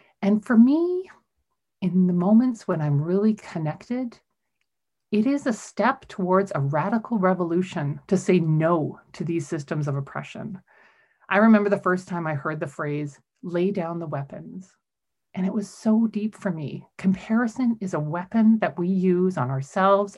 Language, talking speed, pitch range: English, 165 wpm, 165-210 Hz